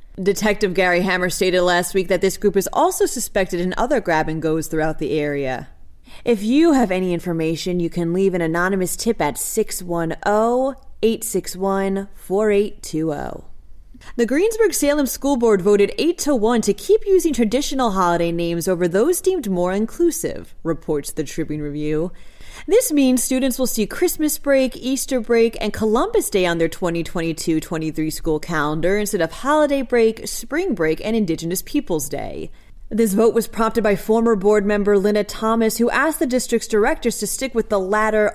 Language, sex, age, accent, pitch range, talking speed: English, female, 30-49, American, 175-240 Hz, 155 wpm